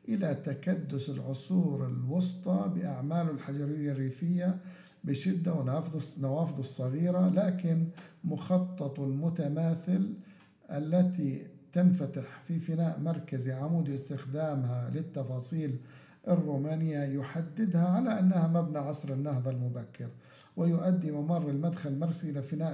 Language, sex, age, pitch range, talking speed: Arabic, male, 50-69, 140-165 Hz, 90 wpm